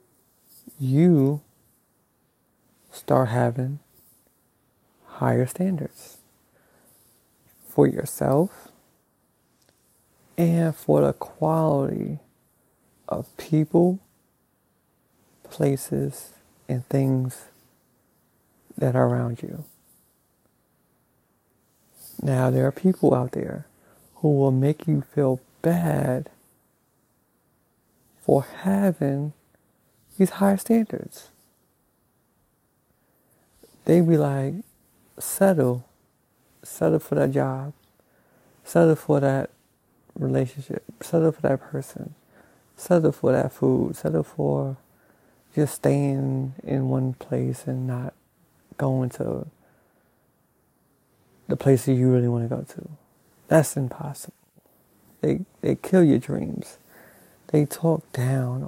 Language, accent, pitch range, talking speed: English, American, 125-160 Hz, 90 wpm